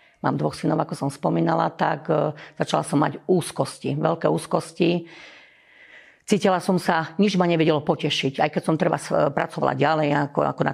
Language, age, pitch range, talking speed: Slovak, 40-59, 150-165 Hz, 160 wpm